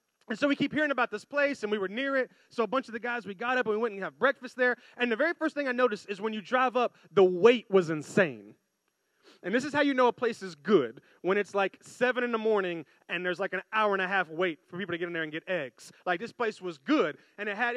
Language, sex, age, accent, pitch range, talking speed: English, male, 30-49, American, 200-255 Hz, 300 wpm